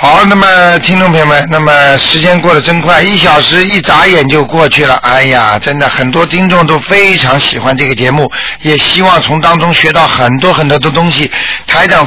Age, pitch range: 50-69, 140-175 Hz